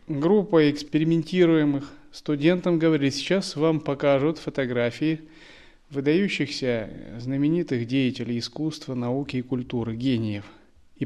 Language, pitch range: Russian, 120-155 Hz